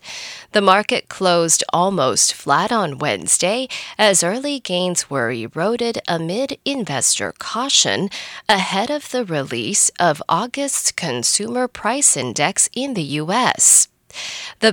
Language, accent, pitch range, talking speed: English, American, 170-250 Hz, 115 wpm